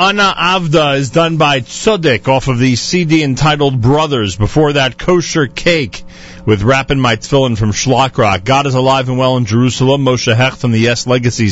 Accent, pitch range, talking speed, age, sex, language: American, 115-155 Hz, 175 wpm, 40-59, male, English